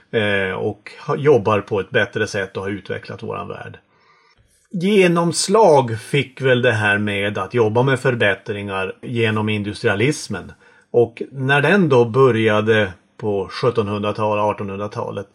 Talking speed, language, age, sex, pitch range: 120 wpm, Swedish, 30-49, male, 105-150 Hz